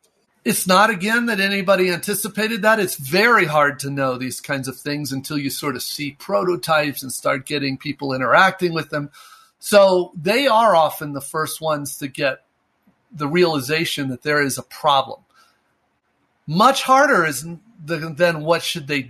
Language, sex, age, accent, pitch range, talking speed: English, male, 50-69, American, 145-195 Hz, 165 wpm